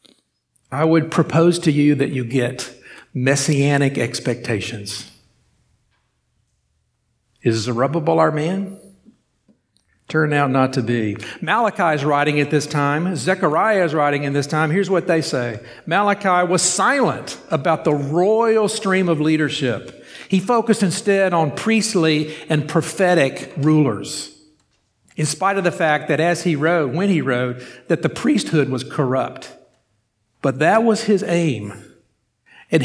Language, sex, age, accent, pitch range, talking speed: English, male, 50-69, American, 145-190 Hz, 135 wpm